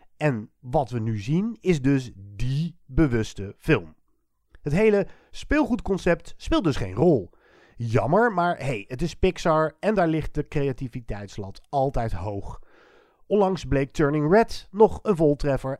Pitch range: 120-185 Hz